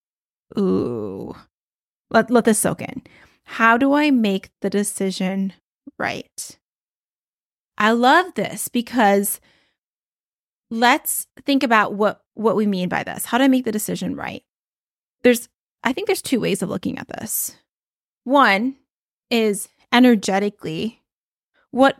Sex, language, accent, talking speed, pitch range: female, English, American, 130 wpm, 200-240 Hz